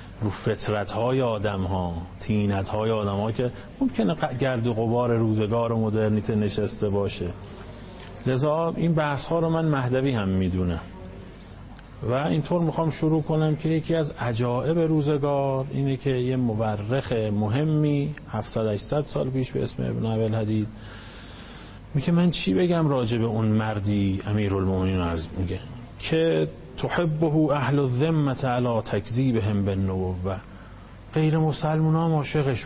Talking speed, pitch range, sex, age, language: 140 wpm, 105-135 Hz, male, 40-59, Persian